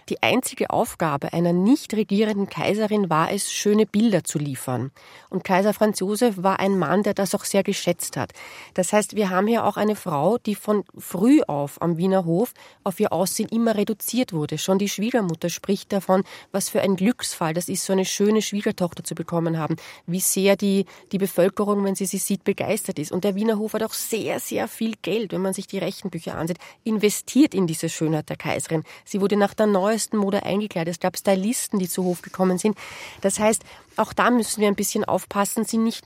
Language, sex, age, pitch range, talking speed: German, female, 30-49, 185-215 Hz, 205 wpm